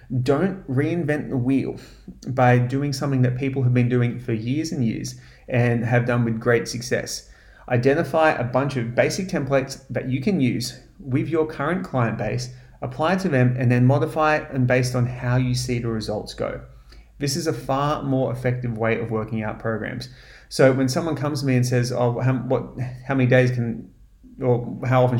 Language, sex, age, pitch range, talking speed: English, male, 30-49, 120-140 Hz, 195 wpm